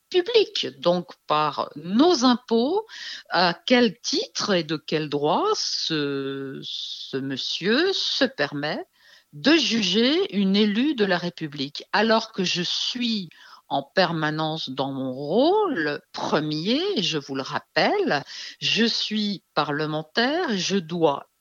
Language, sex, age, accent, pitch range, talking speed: French, female, 60-79, French, 150-230 Hz, 120 wpm